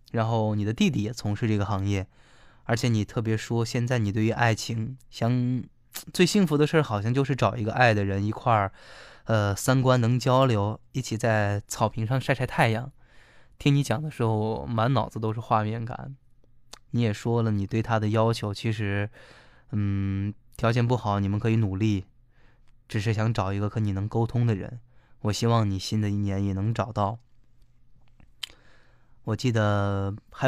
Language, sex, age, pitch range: Chinese, male, 20-39, 105-125 Hz